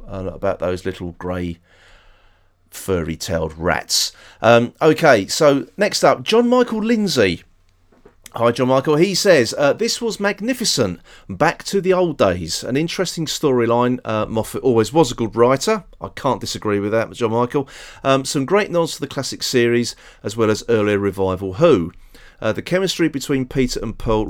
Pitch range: 95-145 Hz